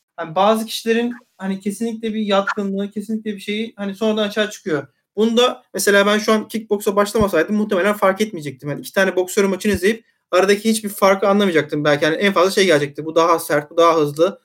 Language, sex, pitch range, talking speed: Turkish, male, 170-210 Hz, 195 wpm